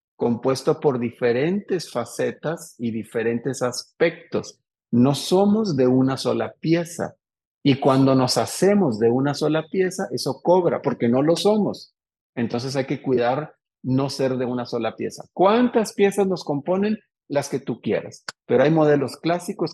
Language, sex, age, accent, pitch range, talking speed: Spanish, male, 50-69, Mexican, 125-170 Hz, 150 wpm